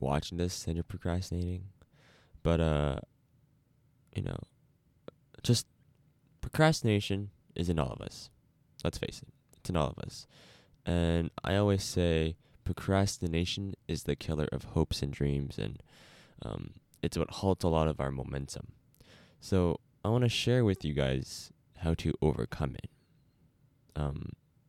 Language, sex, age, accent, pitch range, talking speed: English, male, 20-39, American, 80-125 Hz, 145 wpm